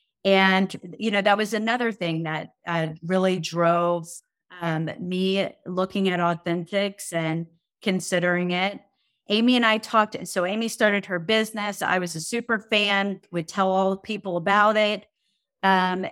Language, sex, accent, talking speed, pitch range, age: English, female, American, 155 wpm, 170-205 Hz, 30-49